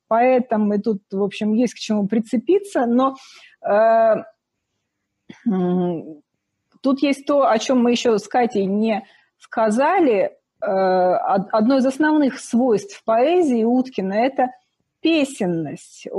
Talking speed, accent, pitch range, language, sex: 110 wpm, native, 215-265 Hz, Russian, female